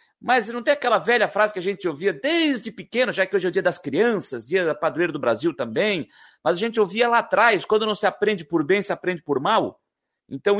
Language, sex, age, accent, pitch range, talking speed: Portuguese, male, 60-79, Brazilian, 185-240 Hz, 245 wpm